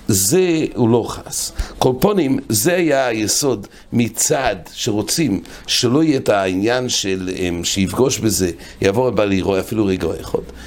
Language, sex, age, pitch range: English, male, 60-79, 95-140 Hz